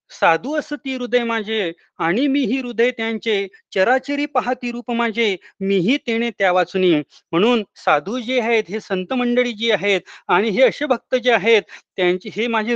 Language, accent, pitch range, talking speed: Marathi, native, 205-250 Hz, 110 wpm